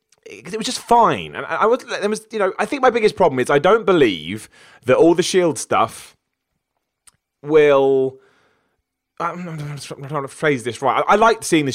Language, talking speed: English, 185 wpm